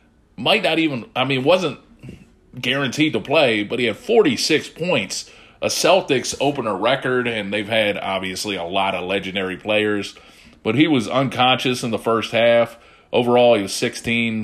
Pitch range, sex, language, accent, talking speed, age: 105-130 Hz, male, English, American, 160 wpm, 30-49